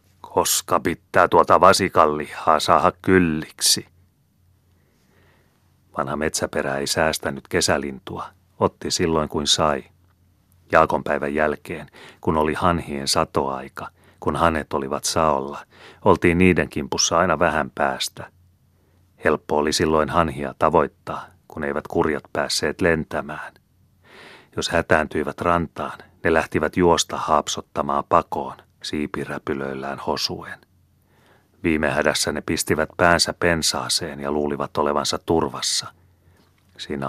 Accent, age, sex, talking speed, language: native, 30-49, male, 100 wpm, Finnish